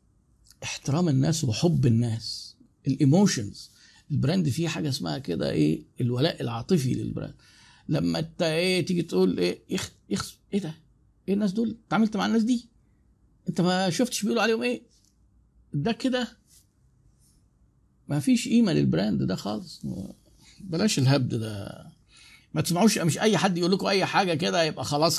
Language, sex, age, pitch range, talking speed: Arabic, male, 50-69, 135-195 Hz, 145 wpm